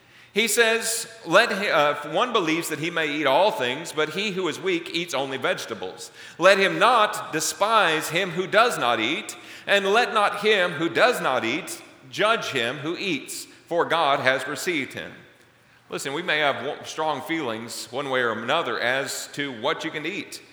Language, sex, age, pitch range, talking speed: English, male, 40-59, 140-195 Hz, 185 wpm